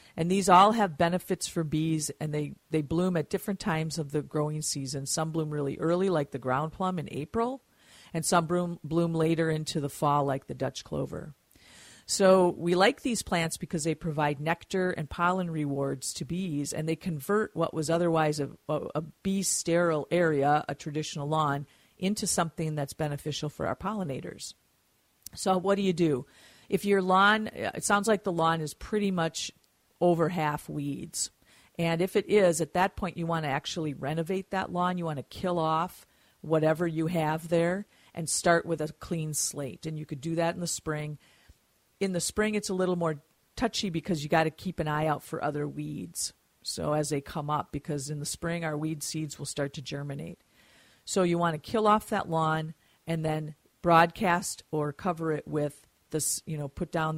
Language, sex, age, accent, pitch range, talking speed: English, female, 50-69, American, 150-180 Hz, 195 wpm